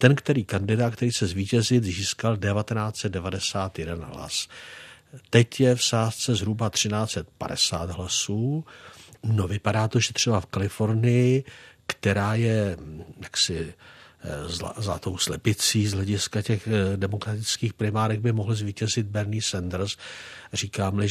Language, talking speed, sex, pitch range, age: Czech, 115 wpm, male, 100-115 Hz, 60-79